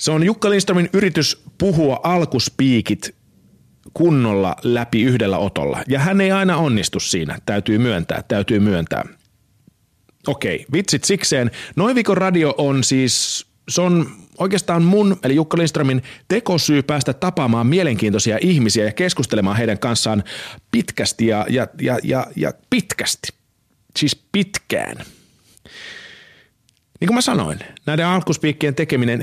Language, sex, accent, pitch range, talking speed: Finnish, male, native, 110-170 Hz, 125 wpm